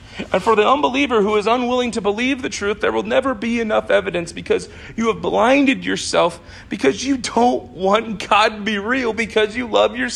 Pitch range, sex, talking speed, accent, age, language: 165-240 Hz, male, 200 wpm, American, 40-59, English